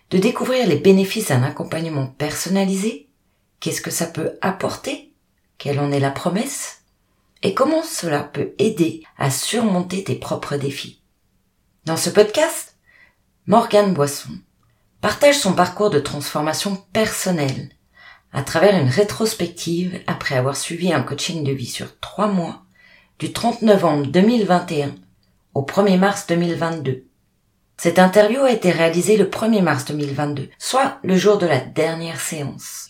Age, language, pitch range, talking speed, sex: 40-59, French, 135-205 Hz, 140 wpm, female